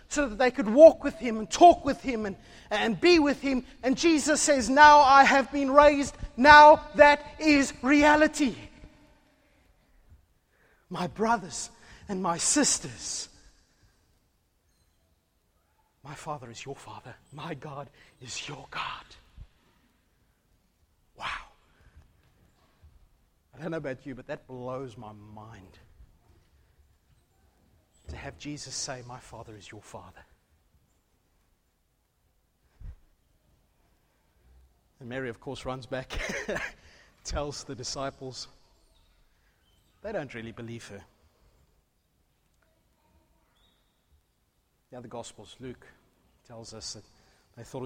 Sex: male